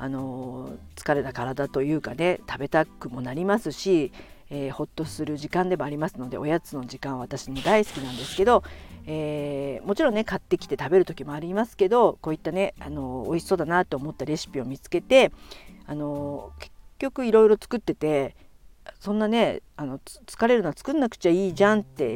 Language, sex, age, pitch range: Japanese, female, 50-69, 140-205 Hz